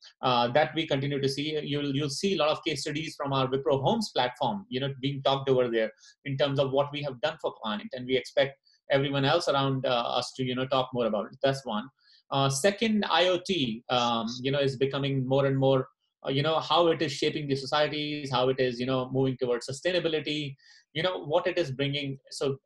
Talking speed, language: 230 wpm, English